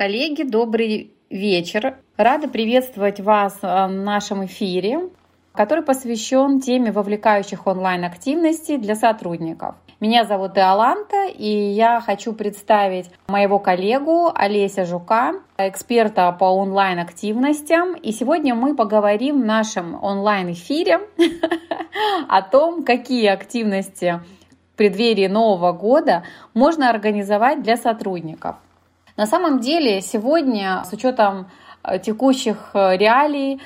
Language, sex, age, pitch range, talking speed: Russian, female, 30-49, 195-255 Hz, 105 wpm